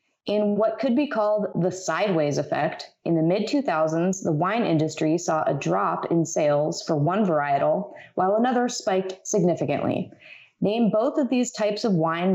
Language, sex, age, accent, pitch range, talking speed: English, female, 20-39, American, 170-220 Hz, 160 wpm